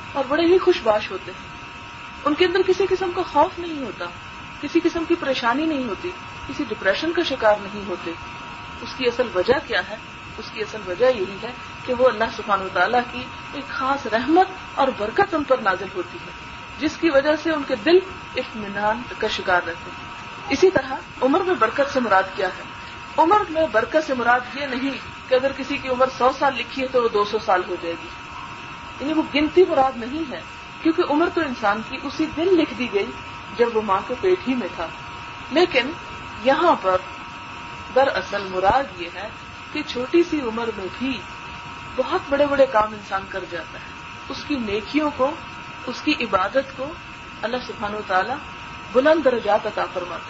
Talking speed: 195 wpm